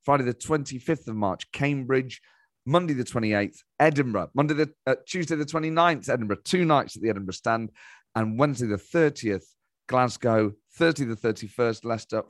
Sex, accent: male, British